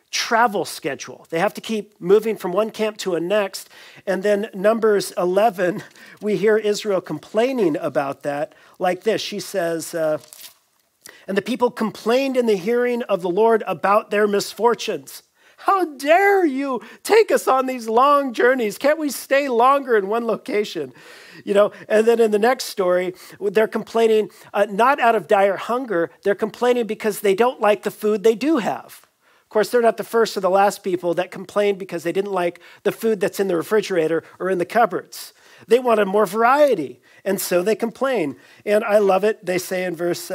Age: 40-59